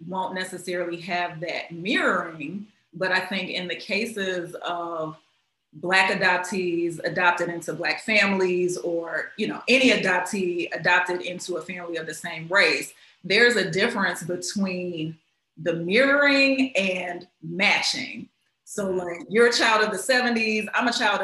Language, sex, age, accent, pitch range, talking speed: English, female, 30-49, American, 180-215 Hz, 140 wpm